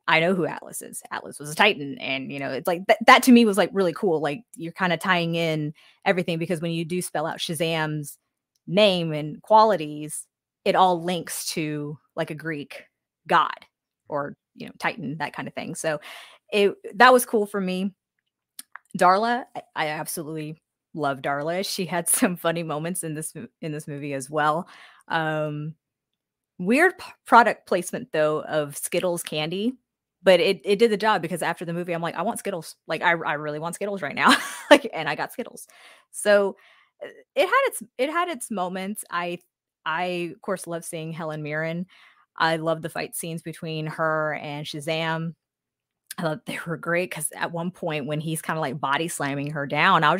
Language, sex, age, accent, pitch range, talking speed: English, female, 20-39, American, 155-195 Hz, 195 wpm